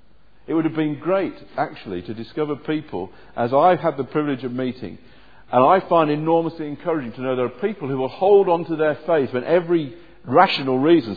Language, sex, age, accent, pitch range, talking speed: English, male, 50-69, British, 110-165 Hz, 200 wpm